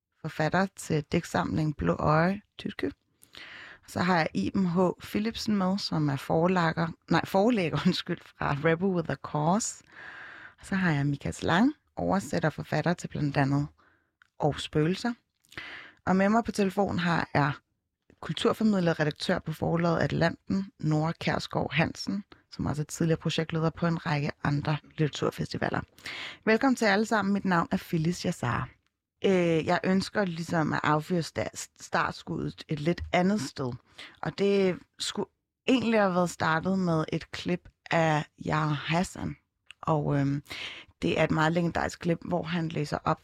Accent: native